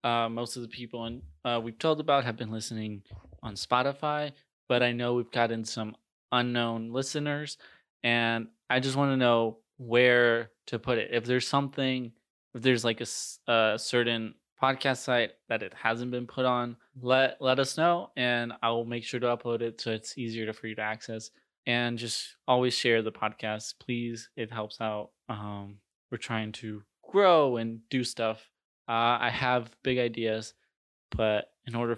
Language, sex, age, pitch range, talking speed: English, male, 20-39, 115-125 Hz, 180 wpm